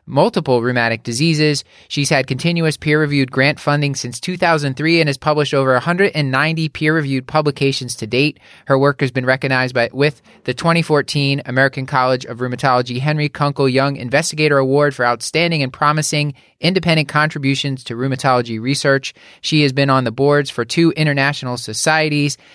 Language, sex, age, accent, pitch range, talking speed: English, male, 20-39, American, 125-155 Hz, 150 wpm